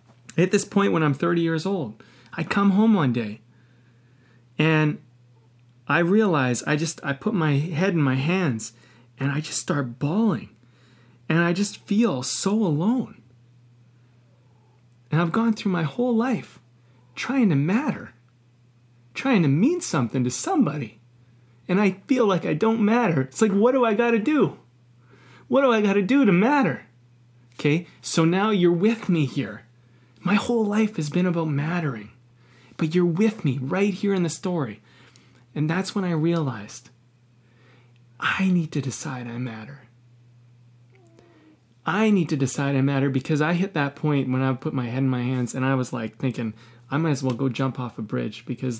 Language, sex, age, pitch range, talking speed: English, male, 30-49, 120-175 Hz, 175 wpm